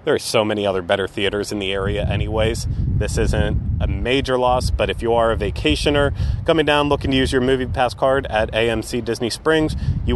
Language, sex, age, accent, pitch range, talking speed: English, male, 30-49, American, 110-130 Hz, 215 wpm